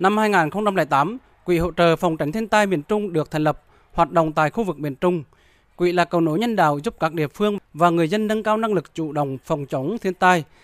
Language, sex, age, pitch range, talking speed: Vietnamese, male, 20-39, 155-195 Hz, 250 wpm